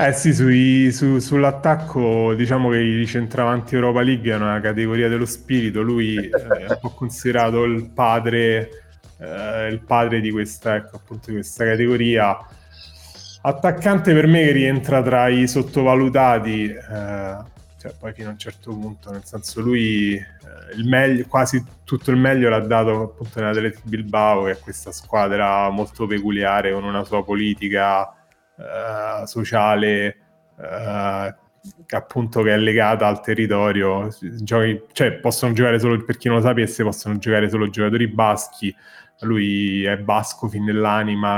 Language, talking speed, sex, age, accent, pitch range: Italian, 150 wpm, male, 20-39, native, 105-120 Hz